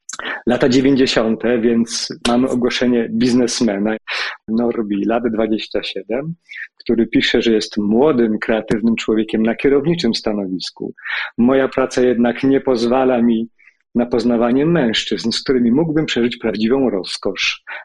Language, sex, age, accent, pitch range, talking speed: Polish, male, 40-59, native, 110-130 Hz, 115 wpm